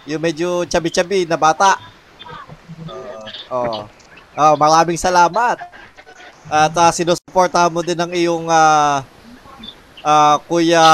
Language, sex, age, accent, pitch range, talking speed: Filipino, male, 20-39, native, 145-185 Hz, 120 wpm